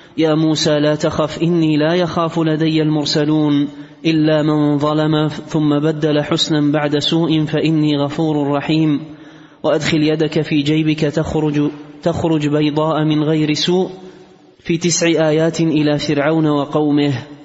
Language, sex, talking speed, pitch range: Arabic, male, 125 wpm, 150-160 Hz